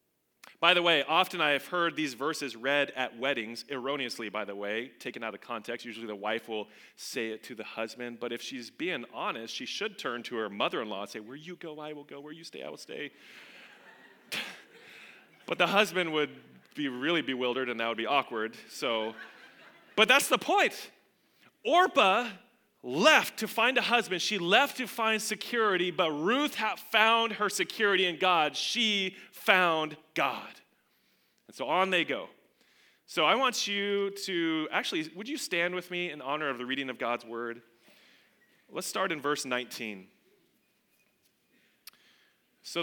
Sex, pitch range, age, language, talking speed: male, 125-185 Hz, 30-49, English, 170 wpm